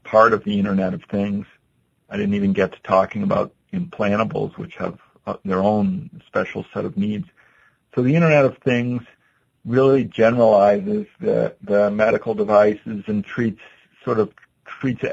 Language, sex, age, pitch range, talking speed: English, male, 50-69, 100-120 Hz, 150 wpm